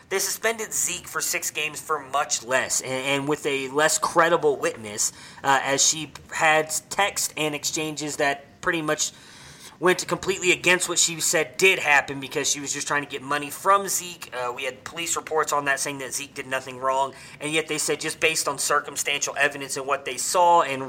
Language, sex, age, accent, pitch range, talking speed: English, male, 30-49, American, 140-165 Hz, 205 wpm